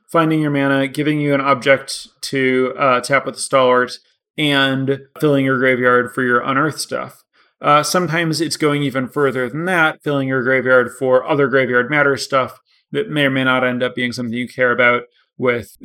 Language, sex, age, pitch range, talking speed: English, male, 30-49, 130-160 Hz, 190 wpm